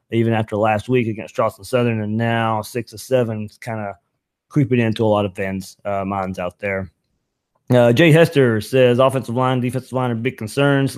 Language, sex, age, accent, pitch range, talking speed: English, male, 20-39, American, 105-135 Hz, 195 wpm